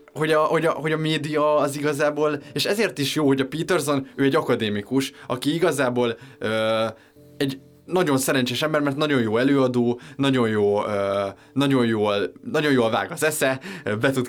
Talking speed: 170 wpm